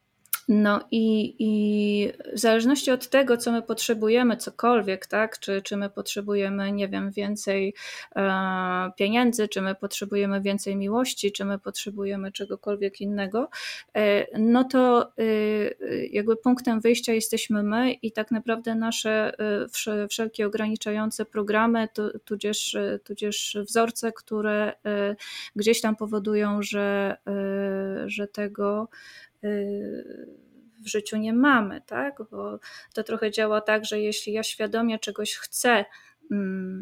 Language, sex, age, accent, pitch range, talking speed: Polish, female, 20-39, native, 200-230 Hz, 125 wpm